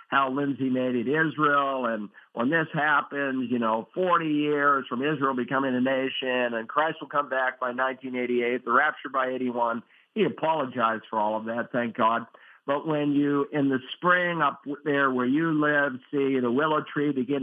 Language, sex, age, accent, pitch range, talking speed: English, male, 50-69, American, 125-150 Hz, 185 wpm